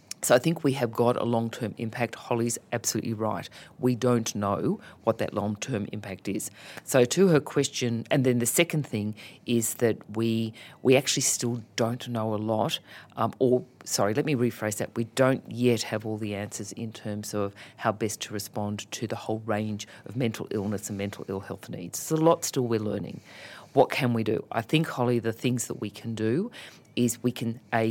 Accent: Australian